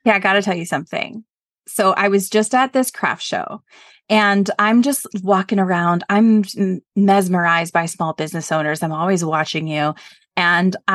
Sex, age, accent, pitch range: female, 20-39, American, 185-225 Hz